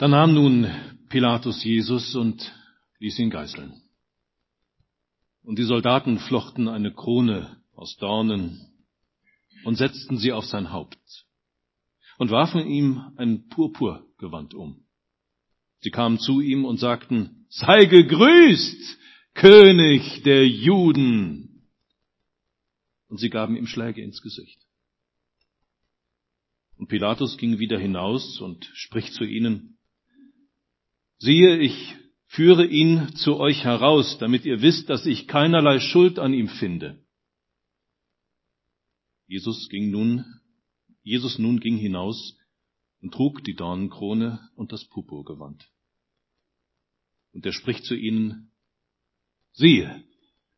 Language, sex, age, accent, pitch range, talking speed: German, male, 50-69, German, 90-135 Hz, 110 wpm